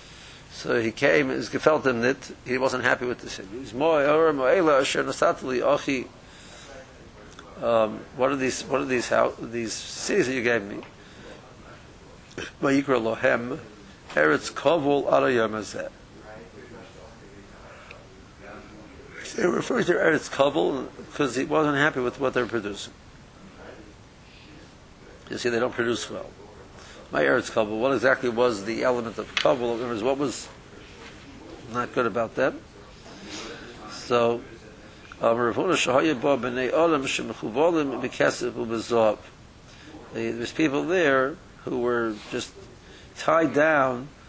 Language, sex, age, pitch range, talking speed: English, male, 60-79, 115-135 Hz, 95 wpm